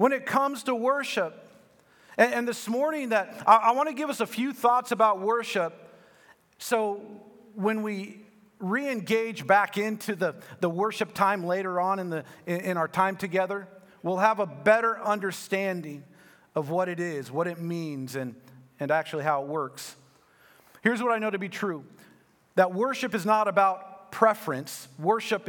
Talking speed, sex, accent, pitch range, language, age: 170 wpm, male, American, 185-235 Hz, English, 40-59